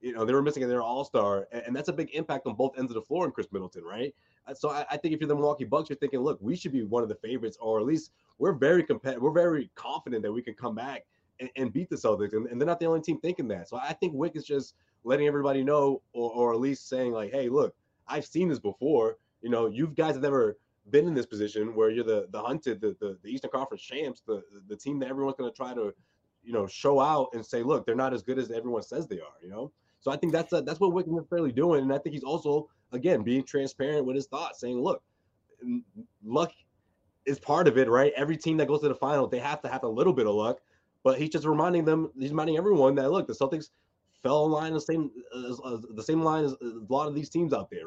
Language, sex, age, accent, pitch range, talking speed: English, male, 20-39, American, 120-155 Hz, 265 wpm